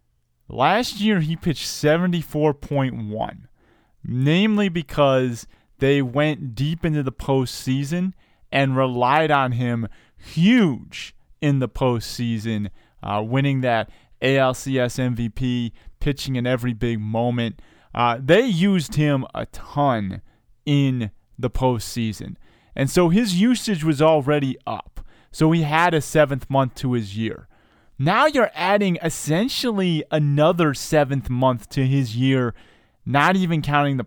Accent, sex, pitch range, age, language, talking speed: American, male, 115-150 Hz, 20-39, English, 125 wpm